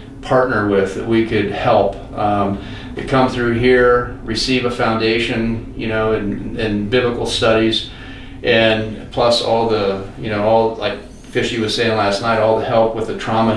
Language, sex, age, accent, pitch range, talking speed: English, male, 40-59, American, 100-115 Hz, 175 wpm